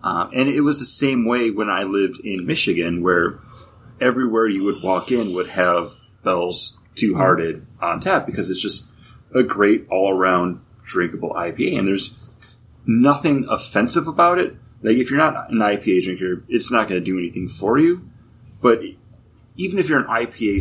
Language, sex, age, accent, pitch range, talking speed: English, male, 30-49, American, 95-120 Hz, 170 wpm